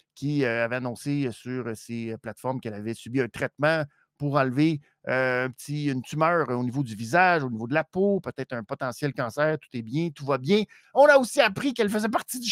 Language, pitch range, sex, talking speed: French, 130-190 Hz, male, 205 wpm